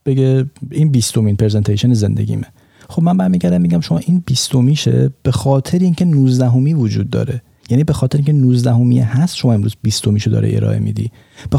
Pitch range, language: 105-130 Hz, Persian